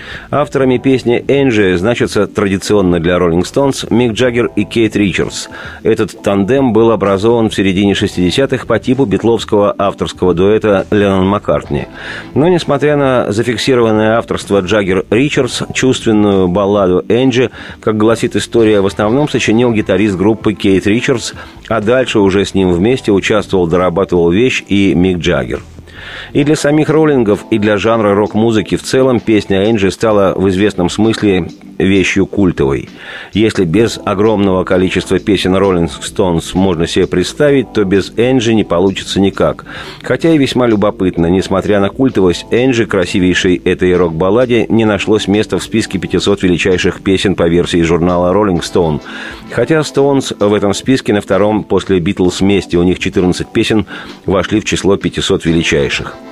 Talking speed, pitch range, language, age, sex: 145 wpm, 90-115 Hz, Russian, 40-59, male